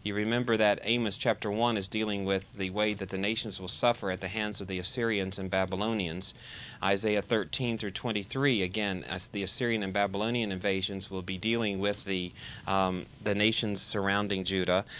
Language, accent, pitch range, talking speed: English, American, 95-110 Hz, 180 wpm